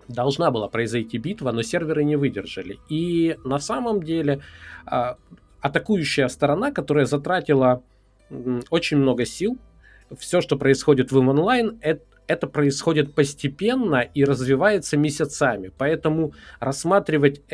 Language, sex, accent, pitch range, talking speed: Russian, male, native, 120-150 Hz, 115 wpm